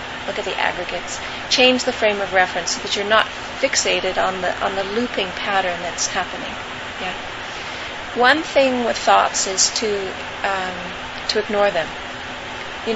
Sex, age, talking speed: female, 30-49, 160 wpm